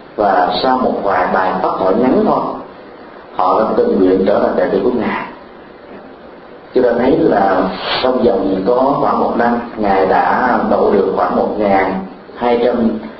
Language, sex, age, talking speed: Vietnamese, male, 40-59, 155 wpm